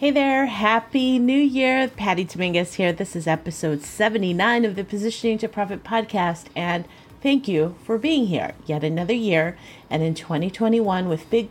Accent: American